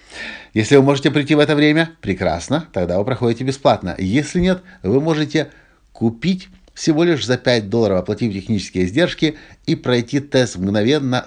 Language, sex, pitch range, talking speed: Russian, male, 95-125 Hz, 155 wpm